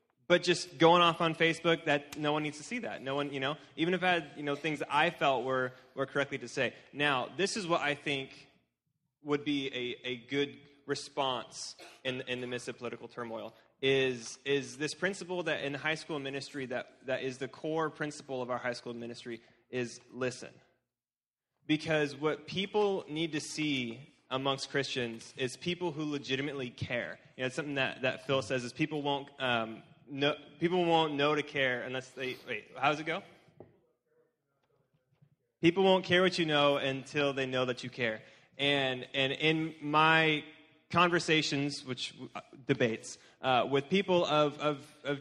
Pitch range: 130-155 Hz